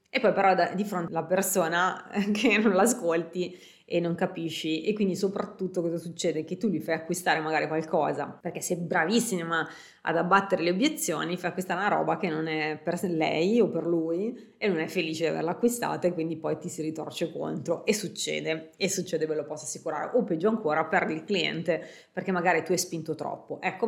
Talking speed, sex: 200 wpm, female